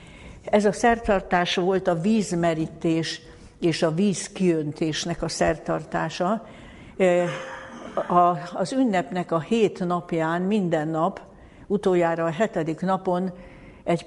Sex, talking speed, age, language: female, 100 wpm, 60-79, Hungarian